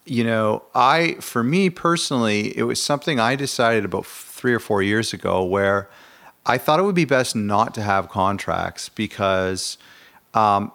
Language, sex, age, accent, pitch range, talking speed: English, male, 40-59, American, 100-120 Hz, 165 wpm